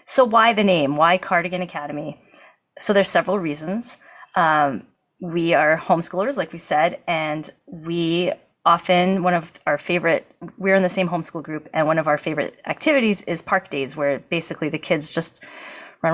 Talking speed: 170 wpm